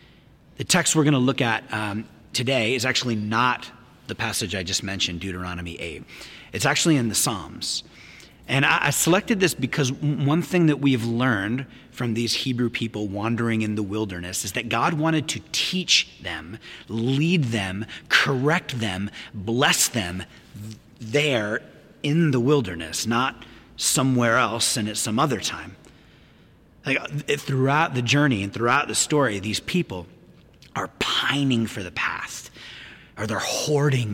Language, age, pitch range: English, 30-49, 105-140 Hz